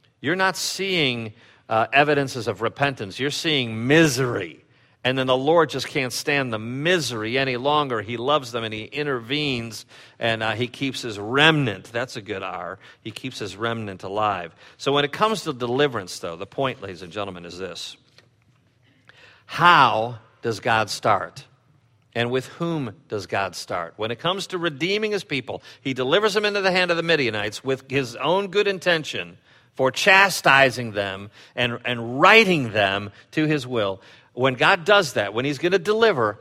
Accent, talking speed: American, 175 wpm